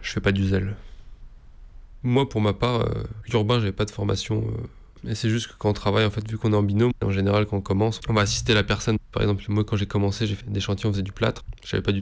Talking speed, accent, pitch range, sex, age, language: 285 wpm, French, 100-115 Hz, male, 20-39, French